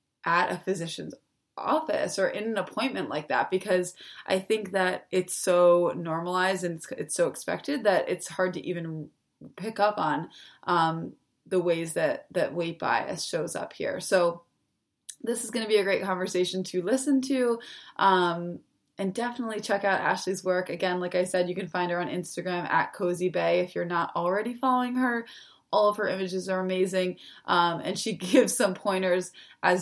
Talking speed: 180 wpm